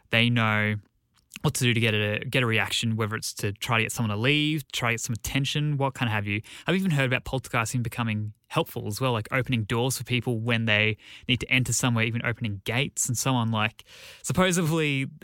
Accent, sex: Australian, male